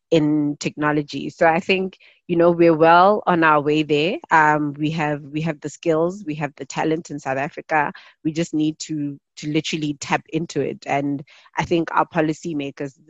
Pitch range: 145-160 Hz